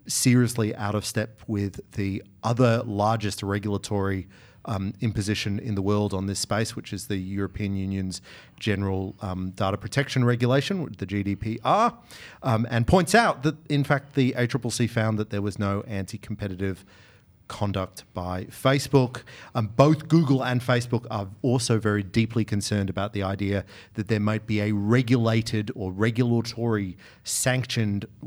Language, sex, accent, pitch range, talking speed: English, male, Australian, 100-125 Hz, 150 wpm